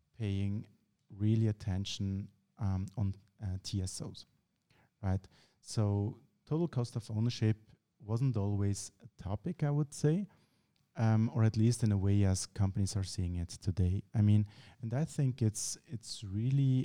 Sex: male